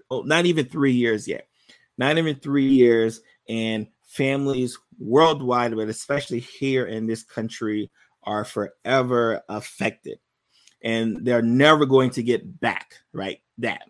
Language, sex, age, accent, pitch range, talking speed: English, male, 20-39, American, 115-135 Hz, 135 wpm